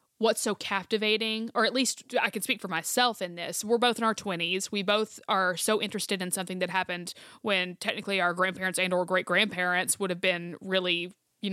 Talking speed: 205 wpm